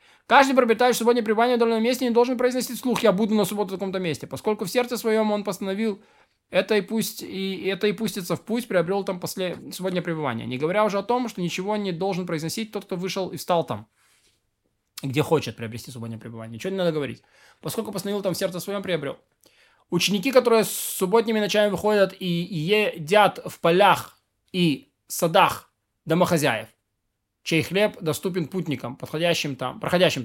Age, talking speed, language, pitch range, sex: 20-39, 180 wpm, Russian, 160-215 Hz, male